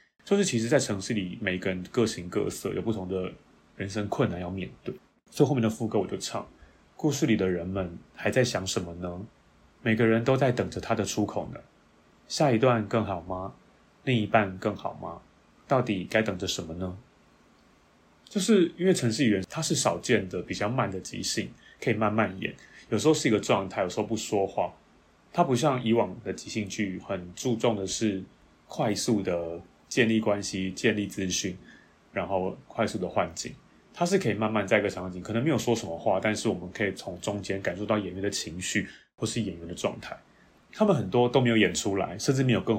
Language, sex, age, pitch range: Chinese, male, 30-49, 95-125 Hz